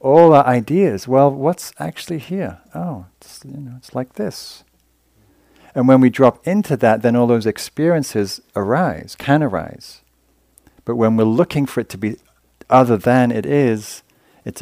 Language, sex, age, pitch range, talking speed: English, male, 50-69, 95-120 Hz, 165 wpm